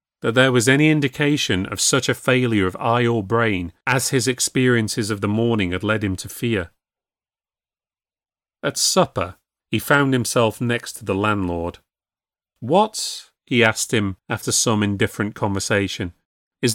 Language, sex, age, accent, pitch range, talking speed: English, male, 30-49, British, 110-140 Hz, 150 wpm